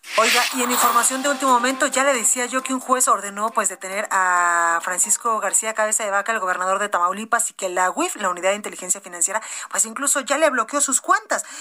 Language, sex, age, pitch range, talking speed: Spanish, female, 30-49, 210-280 Hz, 220 wpm